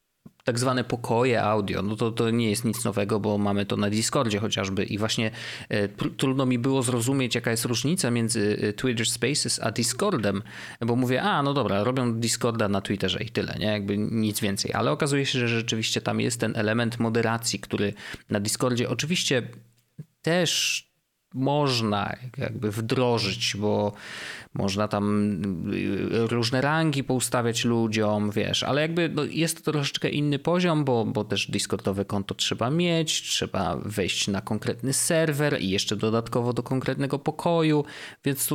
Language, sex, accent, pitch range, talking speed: Polish, male, native, 105-130 Hz, 155 wpm